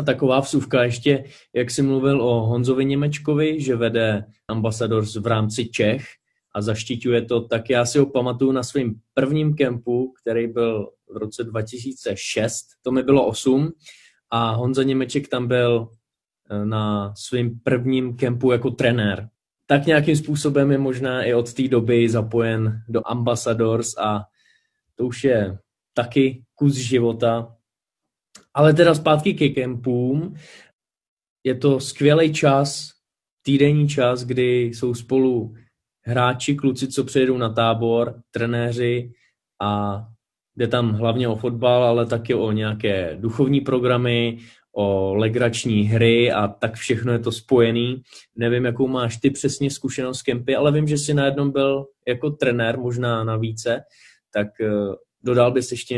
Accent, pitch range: native, 115-135 Hz